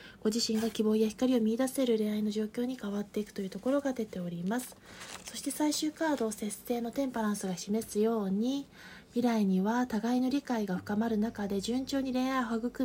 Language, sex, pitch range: Japanese, female, 205-250 Hz